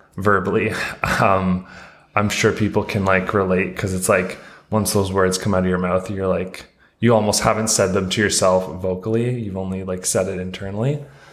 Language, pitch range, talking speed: English, 95-105 Hz, 185 wpm